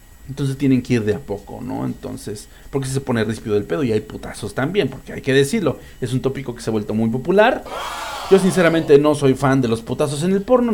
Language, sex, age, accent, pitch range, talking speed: English, male, 40-59, Mexican, 110-145 Hz, 245 wpm